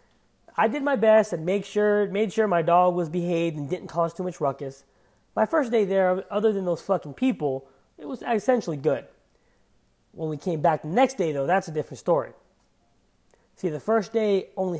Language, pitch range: English, 140-200 Hz